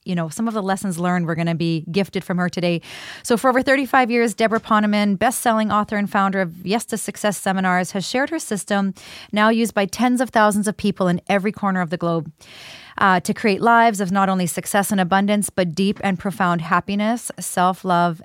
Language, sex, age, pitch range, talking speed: English, female, 30-49, 175-205 Hz, 215 wpm